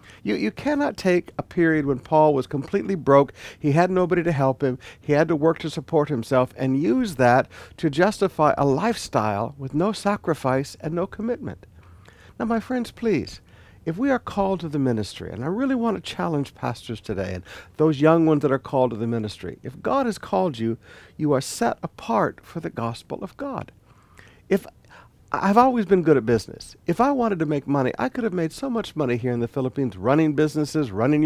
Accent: American